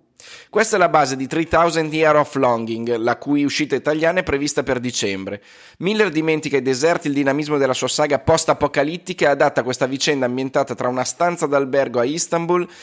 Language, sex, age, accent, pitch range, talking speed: Italian, male, 30-49, native, 125-160 Hz, 180 wpm